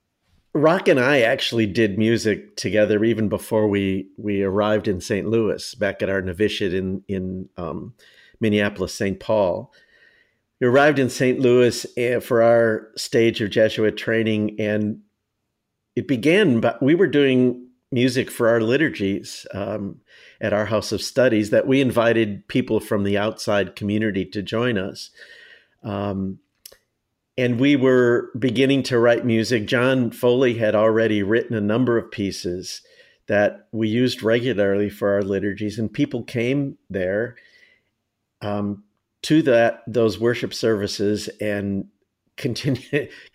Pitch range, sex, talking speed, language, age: 105-125 Hz, male, 140 wpm, English, 50-69